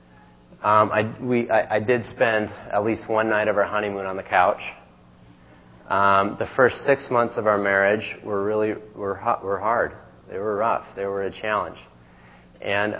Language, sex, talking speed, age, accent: English, male, 175 wpm, 30-49, American